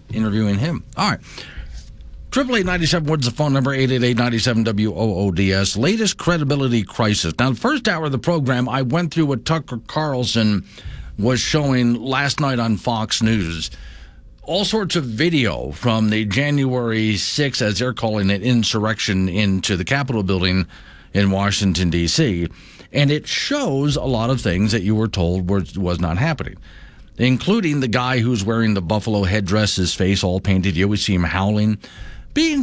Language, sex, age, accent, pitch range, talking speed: English, male, 50-69, American, 95-135 Hz, 165 wpm